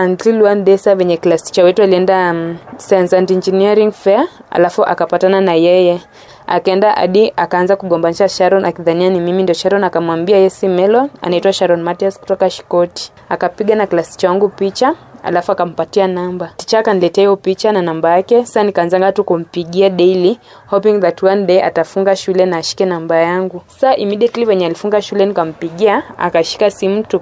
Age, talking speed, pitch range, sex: 20-39, 155 wpm, 175-200 Hz, female